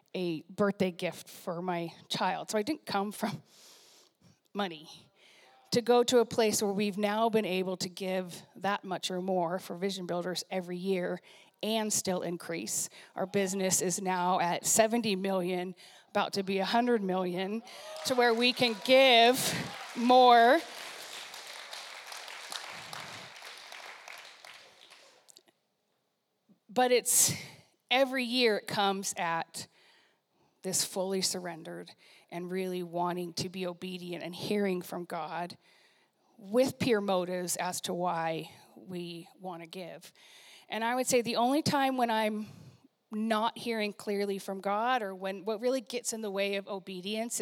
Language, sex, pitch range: English, female, 185-230 Hz